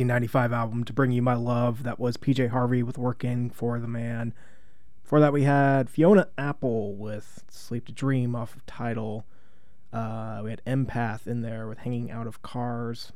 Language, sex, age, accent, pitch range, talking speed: English, male, 20-39, American, 120-140 Hz, 180 wpm